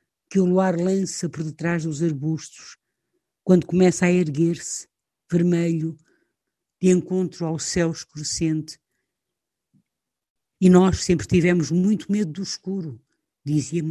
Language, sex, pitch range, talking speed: Portuguese, female, 165-195 Hz, 115 wpm